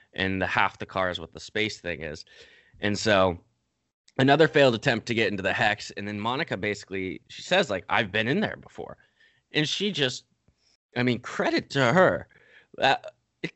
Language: English